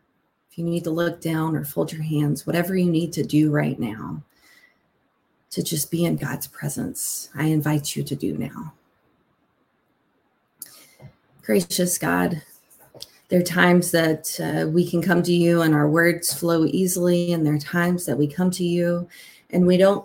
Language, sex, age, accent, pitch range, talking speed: English, female, 30-49, American, 155-180 Hz, 170 wpm